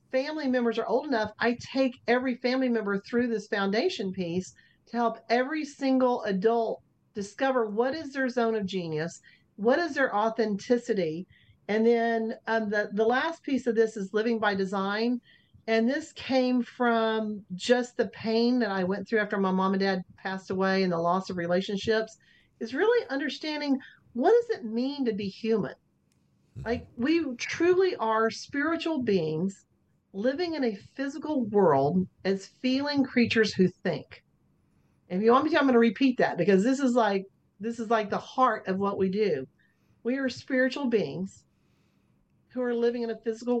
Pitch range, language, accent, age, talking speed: 195-255 Hz, English, American, 40-59, 170 wpm